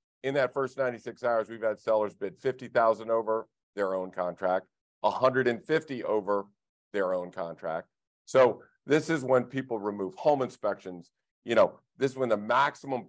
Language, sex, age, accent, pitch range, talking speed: English, male, 50-69, American, 105-135 Hz, 155 wpm